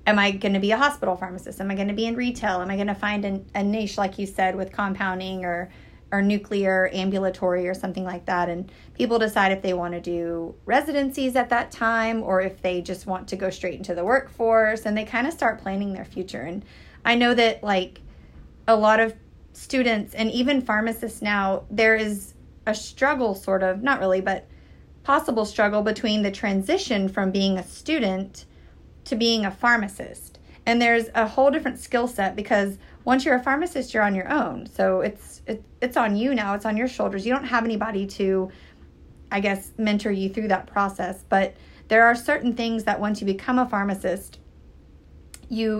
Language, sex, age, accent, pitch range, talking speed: English, female, 30-49, American, 190-225 Hz, 200 wpm